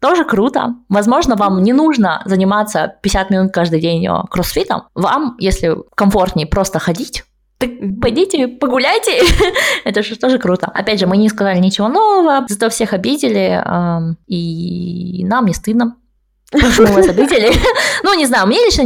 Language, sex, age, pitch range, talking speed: Russian, female, 20-39, 175-240 Hz, 150 wpm